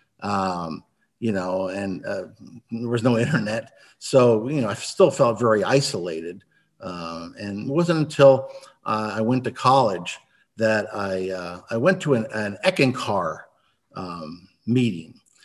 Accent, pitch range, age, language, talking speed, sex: American, 105-135 Hz, 50-69, English, 150 wpm, male